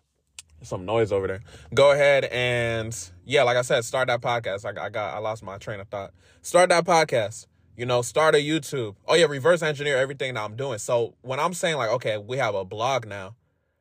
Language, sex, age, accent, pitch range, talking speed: English, male, 20-39, American, 110-150 Hz, 210 wpm